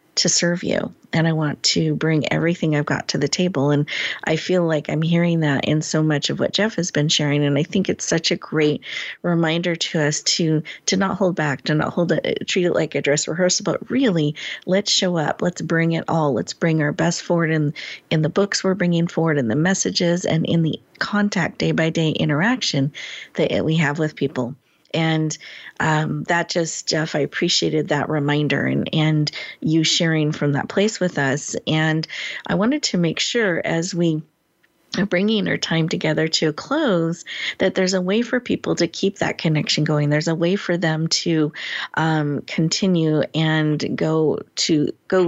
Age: 40-59